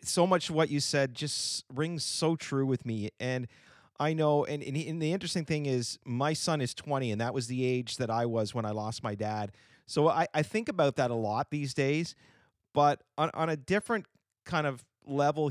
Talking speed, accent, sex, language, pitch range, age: 215 wpm, American, male, English, 120-150 Hz, 40-59